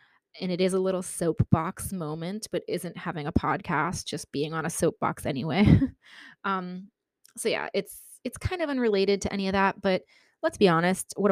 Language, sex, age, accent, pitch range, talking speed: English, female, 20-39, American, 170-210 Hz, 185 wpm